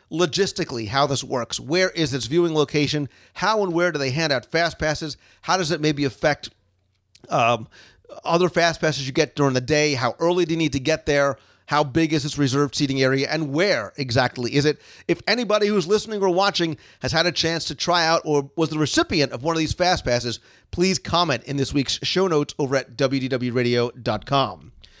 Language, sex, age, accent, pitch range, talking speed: English, male, 40-59, American, 135-185 Hz, 205 wpm